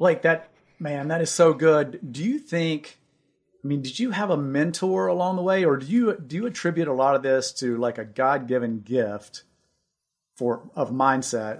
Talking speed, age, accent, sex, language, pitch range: 195 wpm, 40-59, American, male, English, 120-150 Hz